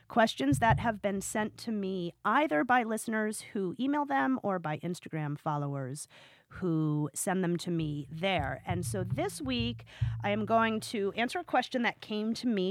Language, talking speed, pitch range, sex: English, 180 wpm, 165-220 Hz, female